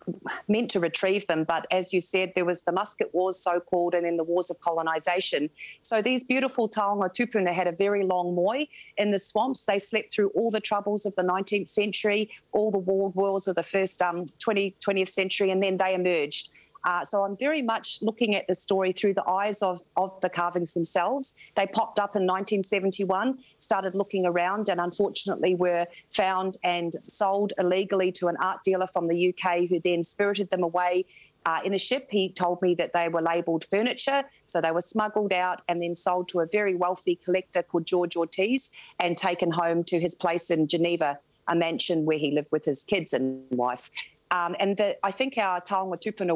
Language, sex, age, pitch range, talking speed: English, female, 40-59, 170-195 Hz, 200 wpm